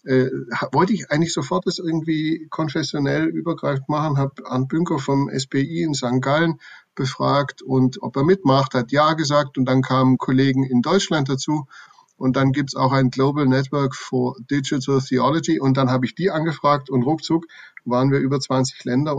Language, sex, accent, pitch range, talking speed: German, male, German, 130-150 Hz, 175 wpm